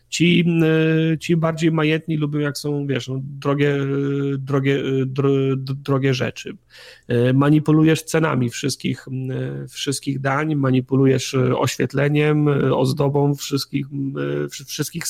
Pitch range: 130-150 Hz